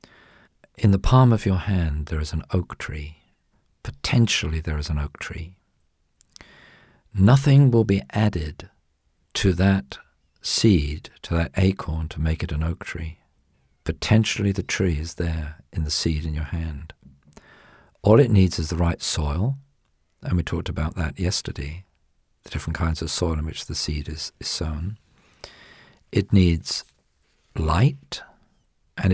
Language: English